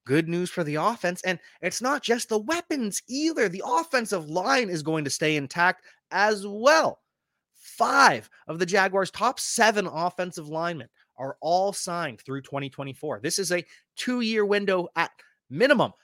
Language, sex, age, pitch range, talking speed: English, male, 20-39, 140-185 Hz, 155 wpm